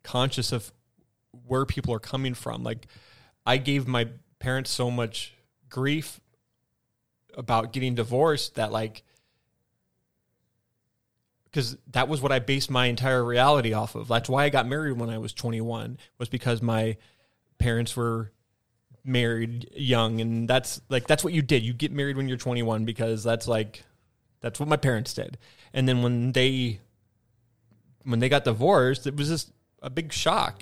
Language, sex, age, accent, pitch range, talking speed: English, male, 20-39, American, 115-135 Hz, 160 wpm